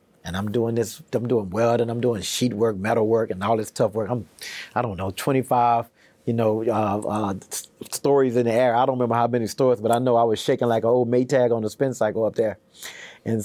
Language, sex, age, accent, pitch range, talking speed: English, male, 40-59, American, 110-125 Hz, 255 wpm